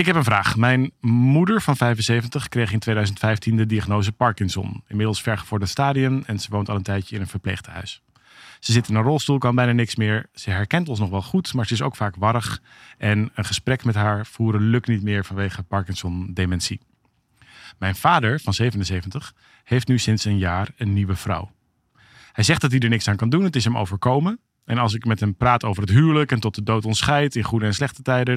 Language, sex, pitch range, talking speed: Dutch, male, 105-125 Hz, 215 wpm